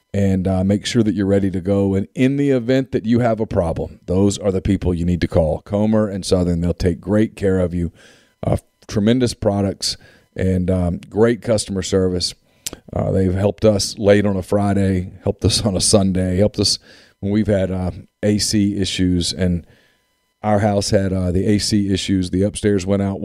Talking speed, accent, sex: 195 wpm, American, male